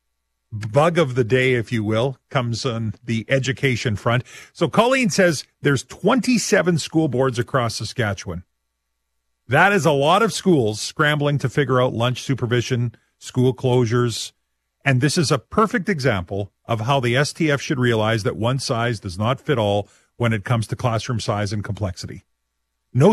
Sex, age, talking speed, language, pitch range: male, 40-59, 165 wpm, English, 110-150 Hz